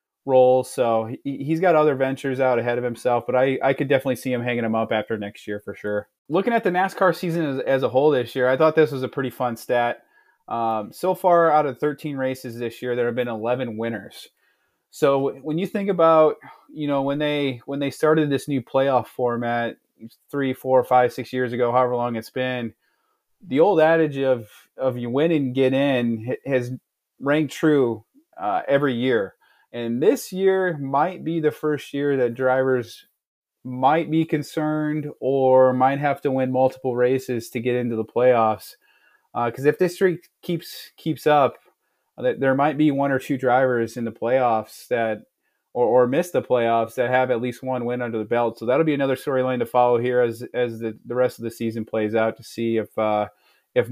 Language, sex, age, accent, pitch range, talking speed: English, male, 30-49, American, 120-145 Hz, 200 wpm